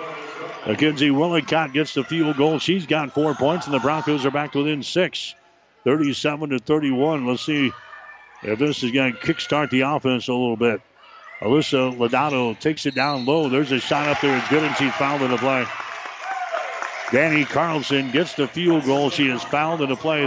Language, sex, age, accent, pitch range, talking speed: English, male, 60-79, American, 130-150 Hz, 185 wpm